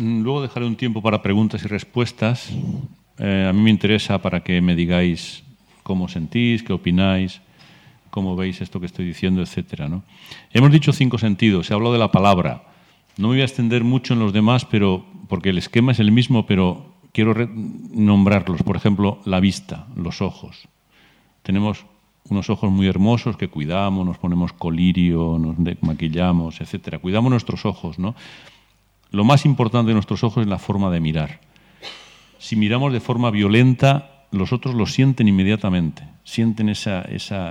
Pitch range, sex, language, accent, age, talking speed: 95-120 Hz, male, Italian, Spanish, 40-59, 165 wpm